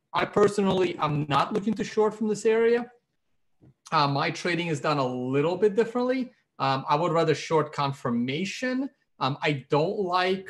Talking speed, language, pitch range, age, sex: 165 wpm, English, 135-200 Hz, 30-49, male